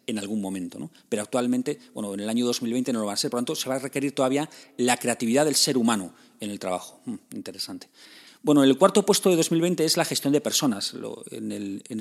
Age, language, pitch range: 40-59, Spanish, 115-150 Hz